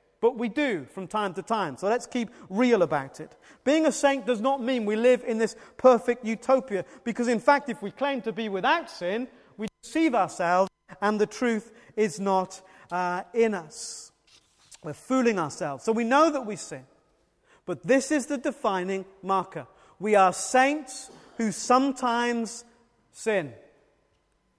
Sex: male